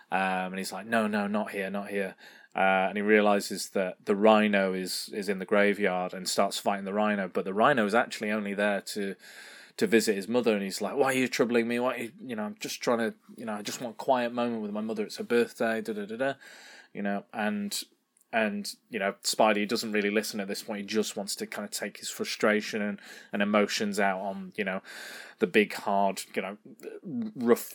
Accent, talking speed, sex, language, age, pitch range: British, 235 wpm, male, English, 20-39, 100-115 Hz